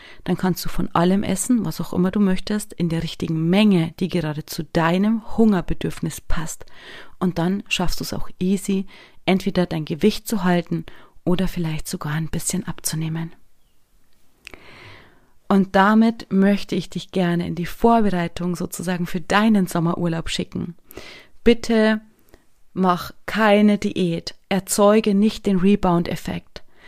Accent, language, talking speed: German, German, 135 wpm